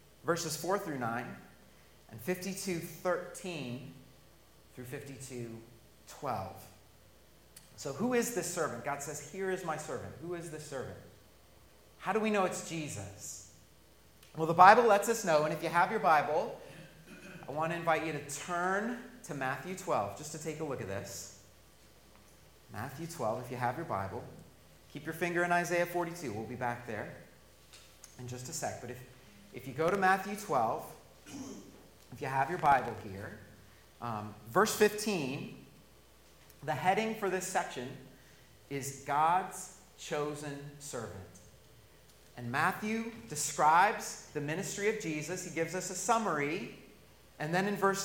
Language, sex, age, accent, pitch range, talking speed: English, male, 30-49, American, 120-185 Hz, 150 wpm